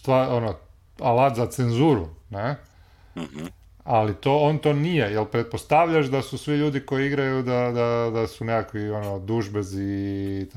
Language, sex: Croatian, male